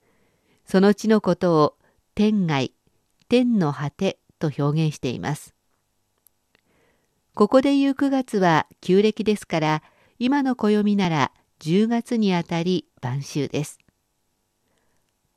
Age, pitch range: 50-69, 150-215 Hz